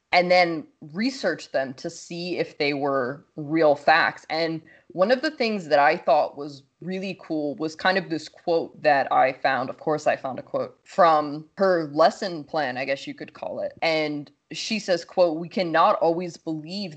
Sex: female